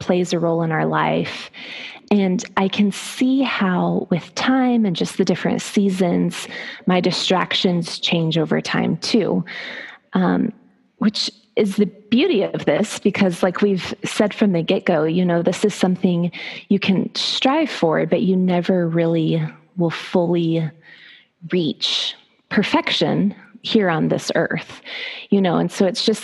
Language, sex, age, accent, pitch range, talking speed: English, female, 20-39, American, 175-220 Hz, 150 wpm